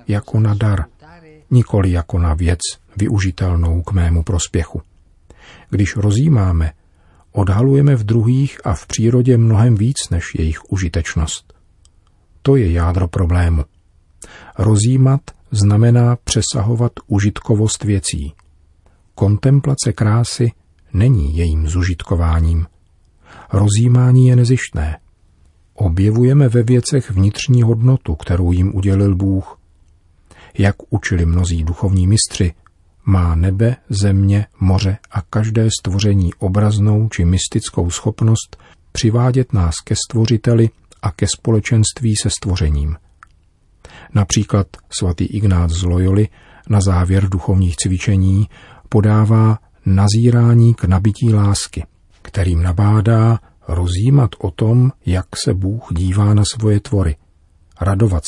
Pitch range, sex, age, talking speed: 85-110 Hz, male, 40-59, 105 wpm